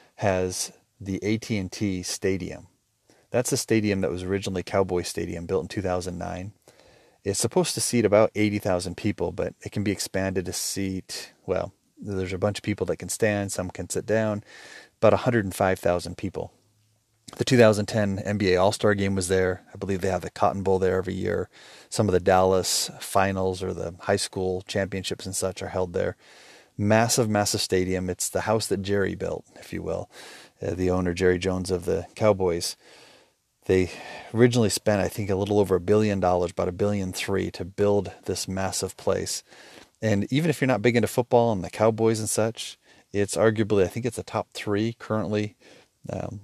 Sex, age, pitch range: male, 30-49, 95-110 Hz